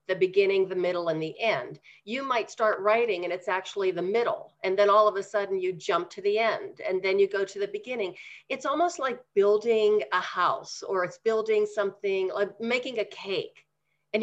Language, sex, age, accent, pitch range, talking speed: English, female, 40-59, American, 195-260 Hz, 205 wpm